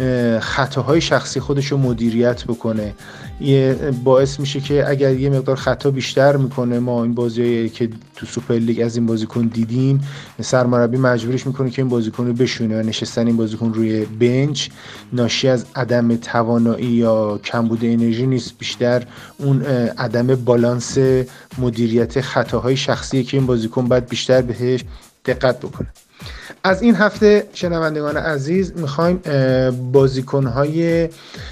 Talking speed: 135 wpm